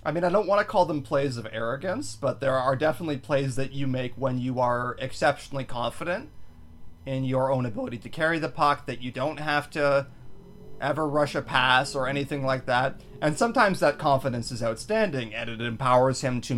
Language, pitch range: English, 120-150 Hz